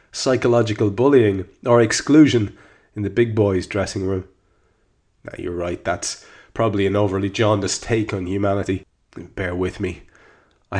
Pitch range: 95-120 Hz